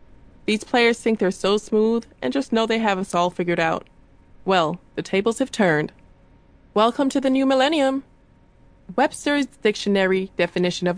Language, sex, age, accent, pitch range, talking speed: English, female, 20-39, American, 175-225 Hz, 160 wpm